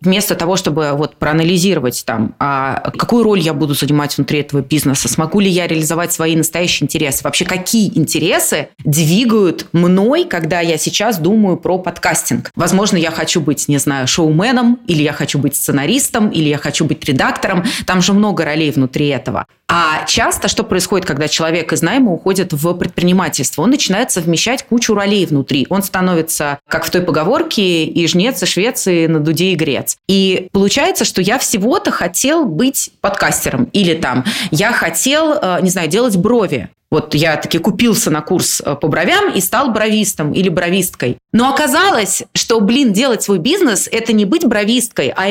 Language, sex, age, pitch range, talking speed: Russian, female, 20-39, 160-230 Hz, 165 wpm